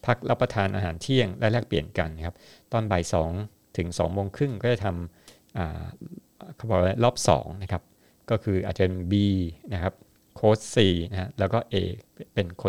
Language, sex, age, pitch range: Thai, male, 60-79, 90-110 Hz